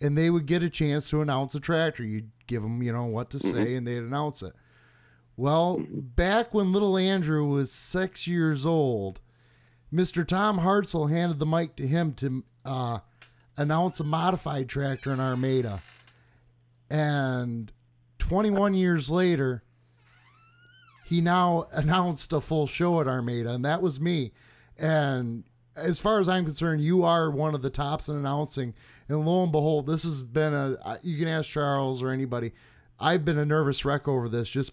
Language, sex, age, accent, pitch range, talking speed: English, male, 30-49, American, 125-160 Hz, 170 wpm